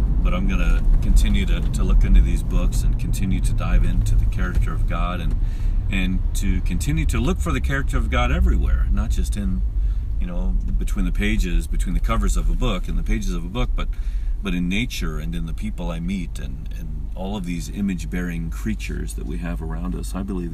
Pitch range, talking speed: 70-100 Hz, 220 wpm